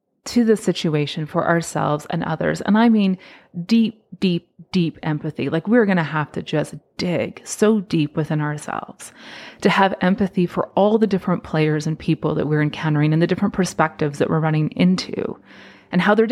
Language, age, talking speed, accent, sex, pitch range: English, 30-49, 180 wpm, American, female, 165-220 Hz